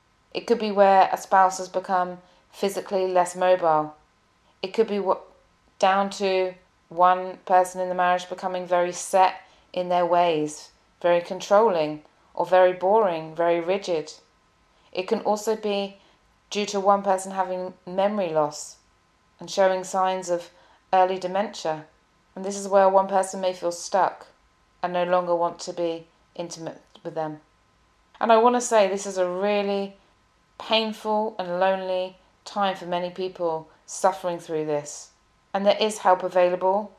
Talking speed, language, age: 150 wpm, English, 30-49